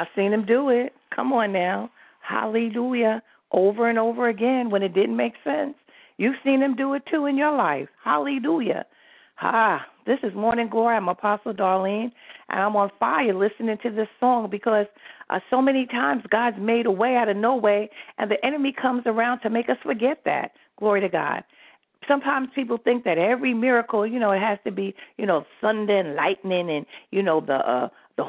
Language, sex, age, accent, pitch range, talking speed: English, female, 50-69, American, 200-245 Hz, 200 wpm